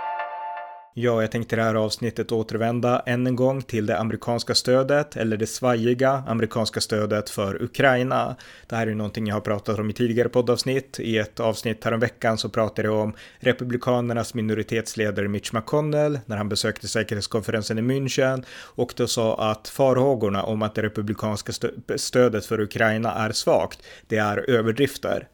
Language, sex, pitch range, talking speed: Swedish, male, 110-125 Hz, 165 wpm